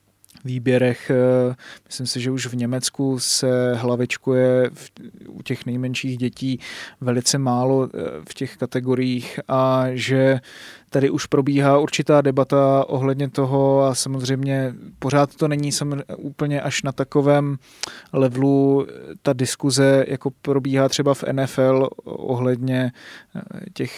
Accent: native